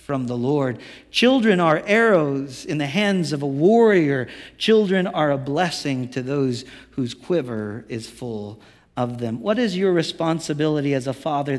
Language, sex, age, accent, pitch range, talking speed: English, male, 50-69, American, 145-200 Hz, 160 wpm